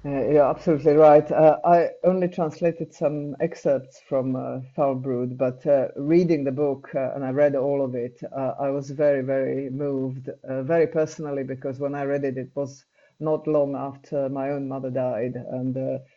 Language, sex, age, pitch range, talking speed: Slovak, female, 50-69, 140-165 Hz, 185 wpm